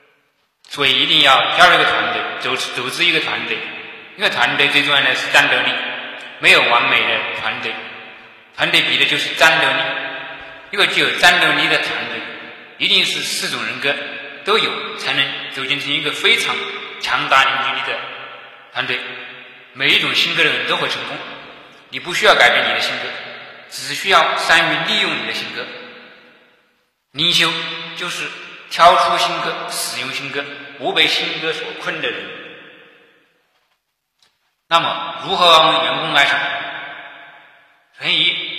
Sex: male